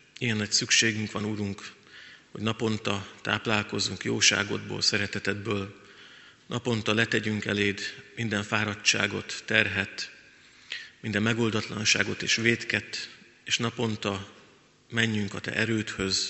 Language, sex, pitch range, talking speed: Hungarian, male, 100-115 Hz, 95 wpm